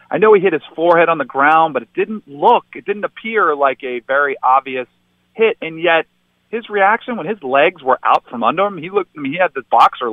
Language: English